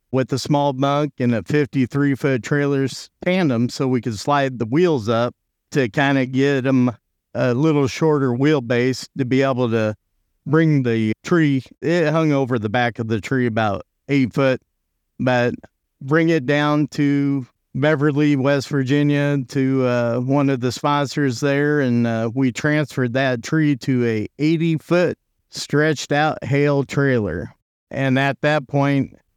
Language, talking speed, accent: English, 155 wpm, American